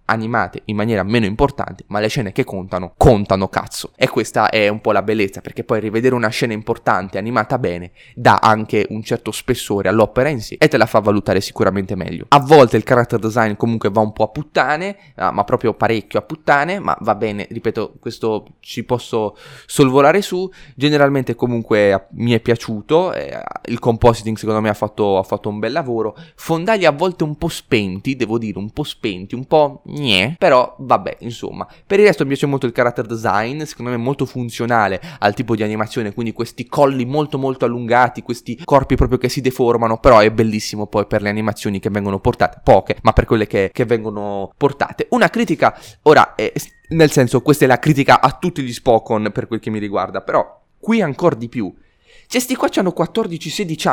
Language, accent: Italian, native